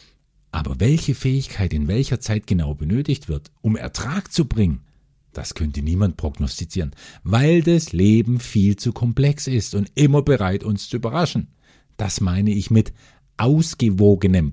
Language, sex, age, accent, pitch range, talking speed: German, male, 50-69, German, 95-140 Hz, 145 wpm